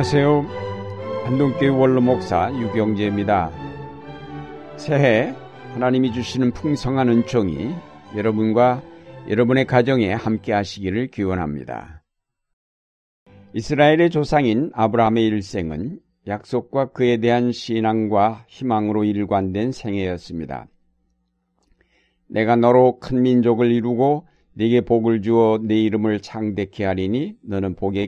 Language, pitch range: Korean, 105-125 Hz